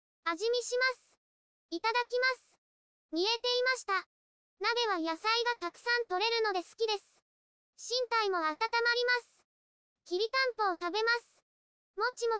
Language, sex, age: Japanese, male, 20-39